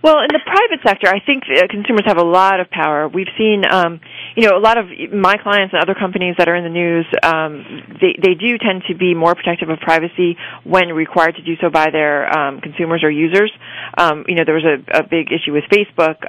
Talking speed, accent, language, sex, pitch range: 240 wpm, American, English, female, 155-190 Hz